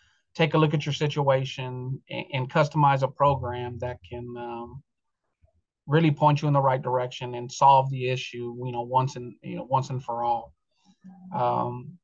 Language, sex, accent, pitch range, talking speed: English, male, American, 125-145 Hz, 175 wpm